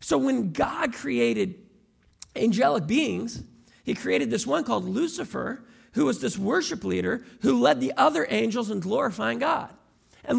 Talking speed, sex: 150 wpm, male